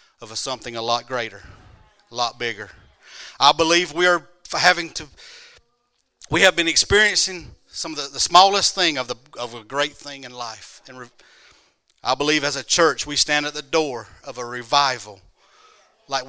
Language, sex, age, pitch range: English, male, 40-59, 125-165 Hz